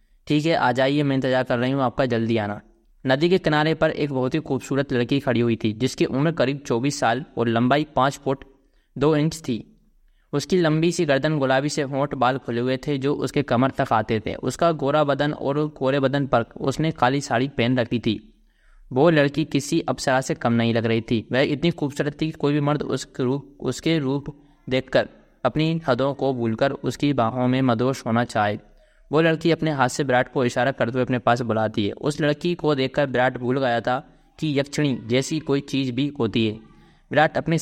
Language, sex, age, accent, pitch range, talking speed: Hindi, male, 20-39, native, 120-145 Hz, 210 wpm